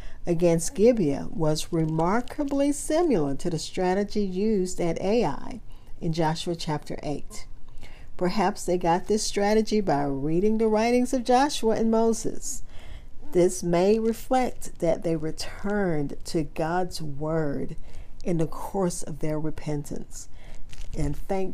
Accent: American